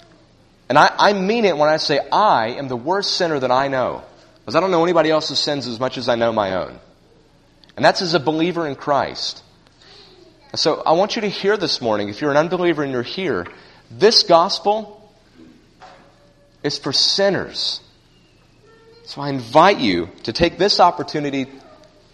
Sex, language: male, English